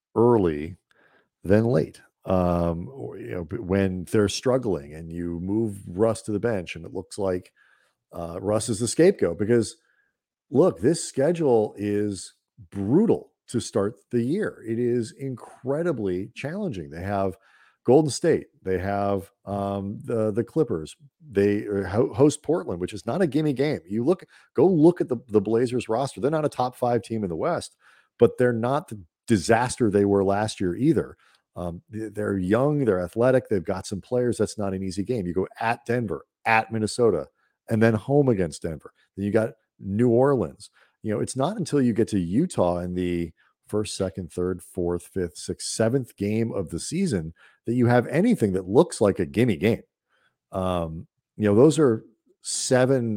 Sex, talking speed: male, 175 wpm